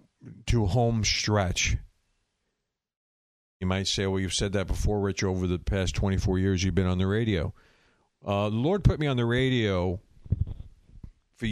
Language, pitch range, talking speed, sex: English, 95-115 Hz, 165 wpm, male